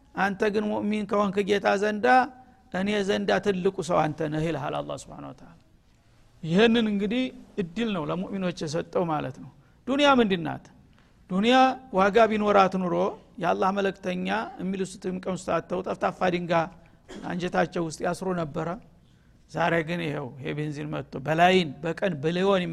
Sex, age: male, 60-79